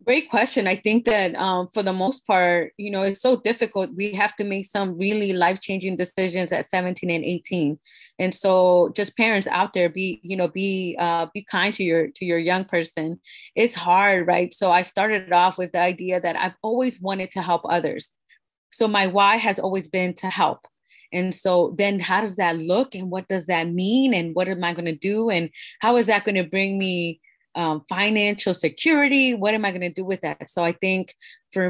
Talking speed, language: 215 wpm, English